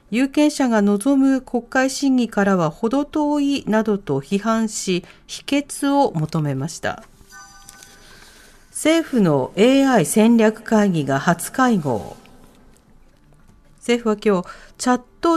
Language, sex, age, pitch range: Japanese, female, 40-59, 195-275 Hz